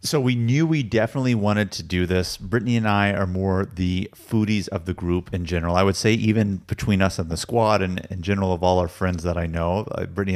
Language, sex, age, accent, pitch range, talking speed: English, male, 30-49, American, 95-115 Hz, 240 wpm